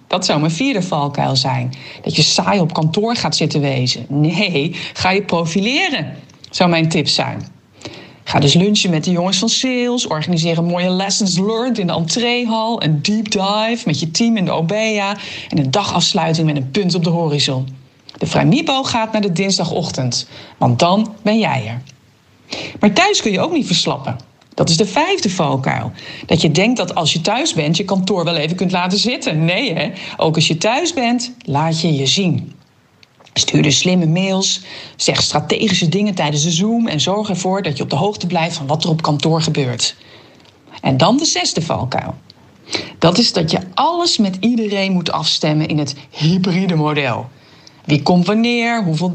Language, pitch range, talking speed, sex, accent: Dutch, 155-210 Hz, 185 wpm, female, Dutch